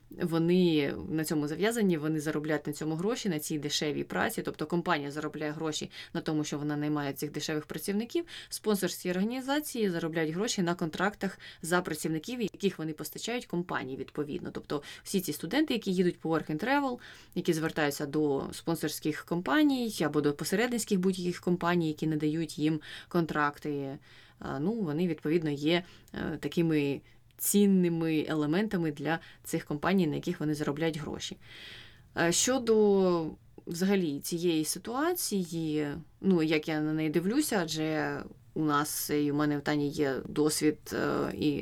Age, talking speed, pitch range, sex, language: 20-39, 140 wpm, 150-180 Hz, female, Ukrainian